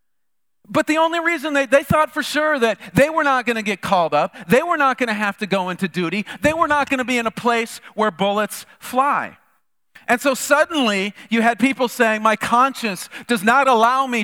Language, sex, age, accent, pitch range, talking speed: English, male, 40-59, American, 190-255 Hz, 210 wpm